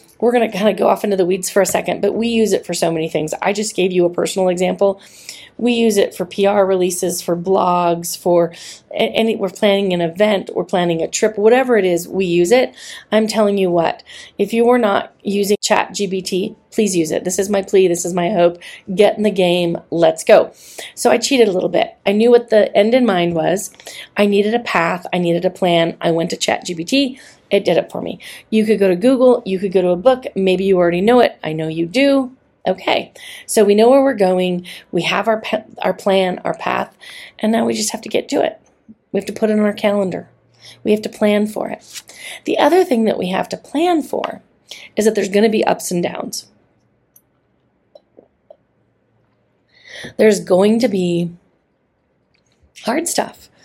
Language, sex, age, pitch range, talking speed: English, female, 30-49, 180-225 Hz, 215 wpm